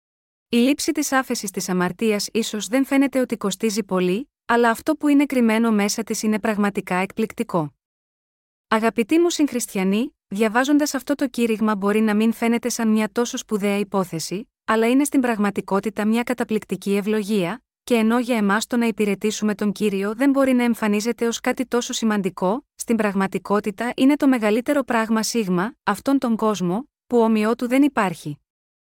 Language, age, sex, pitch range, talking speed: Greek, 20-39, female, 205-255 Hz, 160 wpm